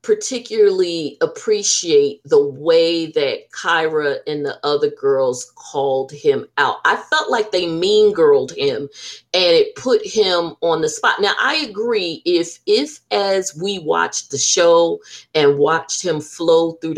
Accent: American